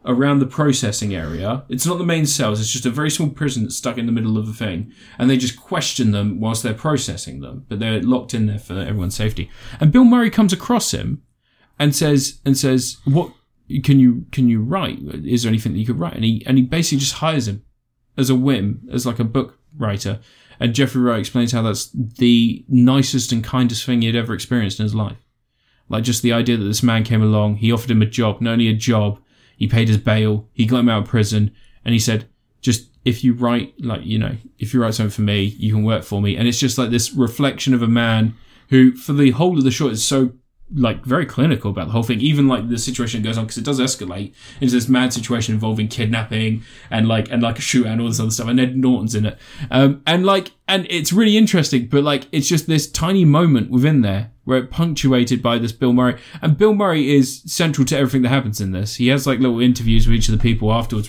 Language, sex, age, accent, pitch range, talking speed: English, male, 20-39, British, 115-135 Hz, 245 wpm